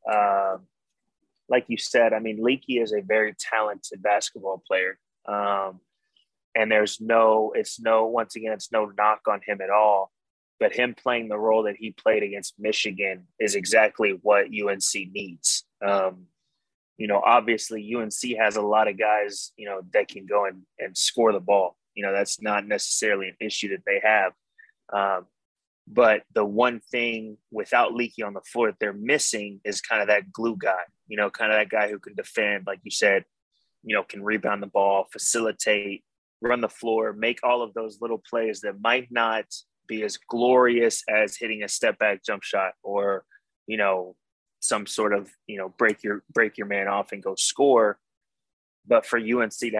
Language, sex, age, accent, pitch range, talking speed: English, male, 20-39, American, 100-115 Hz, 185 wpm